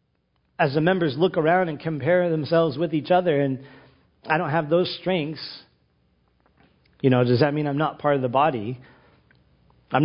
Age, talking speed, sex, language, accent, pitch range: 40-59, 175 wpm, male, English, American, 135-170 Hz